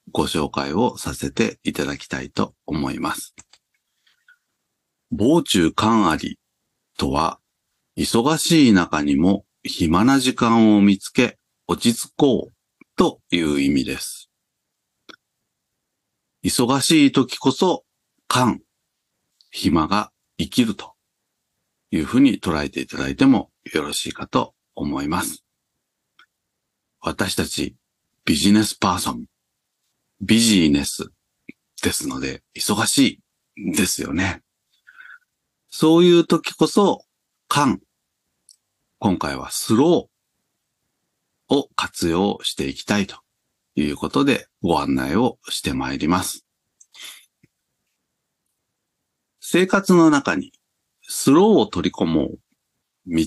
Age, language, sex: 50-69, Japanese, male